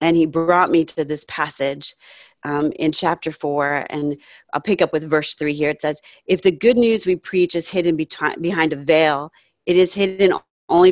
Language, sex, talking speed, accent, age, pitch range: English, female, 200 wpm, American, 40-59, 150-175 Hz